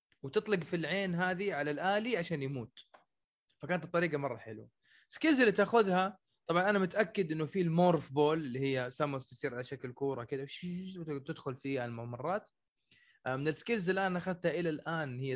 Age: 20-39